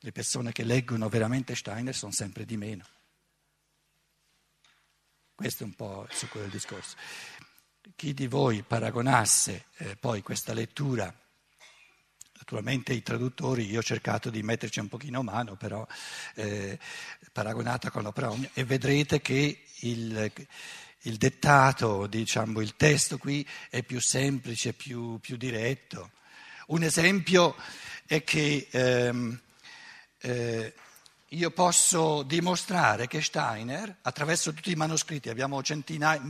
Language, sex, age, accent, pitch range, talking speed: Italian, male, 60-79, native, 120-160 Hz, 125 wpm